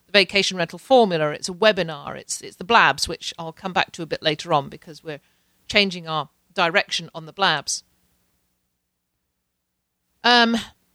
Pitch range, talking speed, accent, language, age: 155-220 Hz, 155 wpm, British, English, 50-69